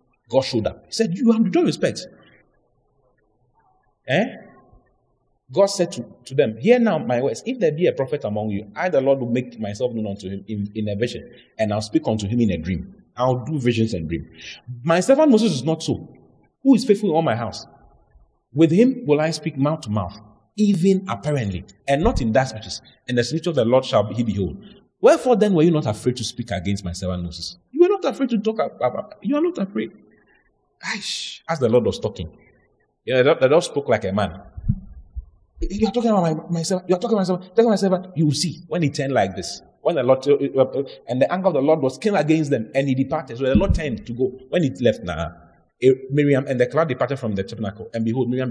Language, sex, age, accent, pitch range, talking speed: English, male, 30-49, Nigerian, 105-165 Hz, 225 wpm